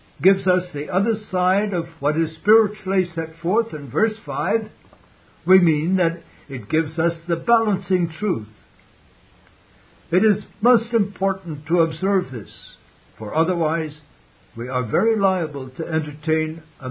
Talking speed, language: 140 wpm, English